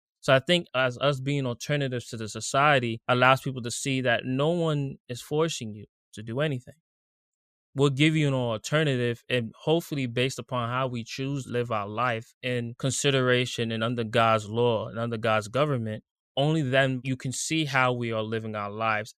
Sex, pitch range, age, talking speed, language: male, 110-130 Hz, 20-39, 190 wpm, English